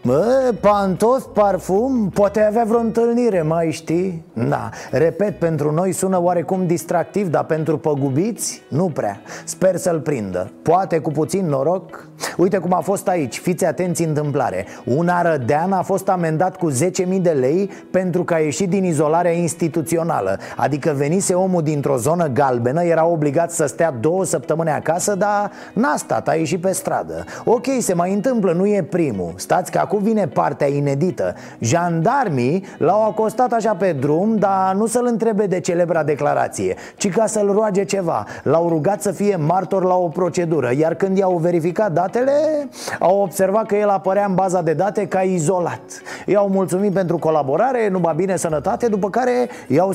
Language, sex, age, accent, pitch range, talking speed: Romanian, male, 30-49, native, 160-200 Hz, 165 wpm